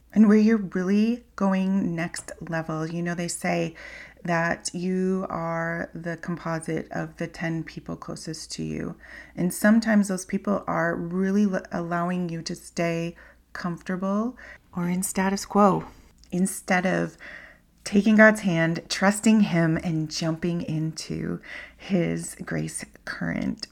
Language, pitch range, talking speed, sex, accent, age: English, 160-200 Hz, 130 wpm, female, American, 30-49